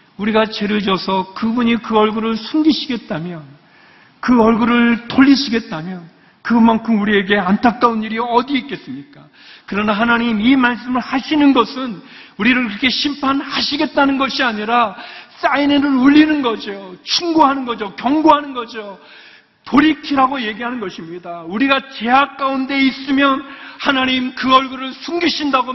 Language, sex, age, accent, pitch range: Korean, male, 40-59, native, 225-285 Hz